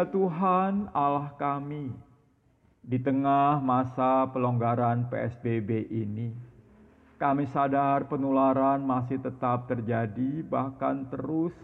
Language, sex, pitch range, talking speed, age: Indonesian, male, 125-160 Hz, 90 wpm, 50-69